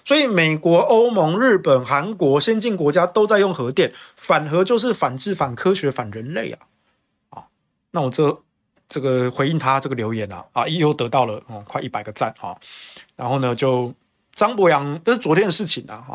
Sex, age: male, 20-39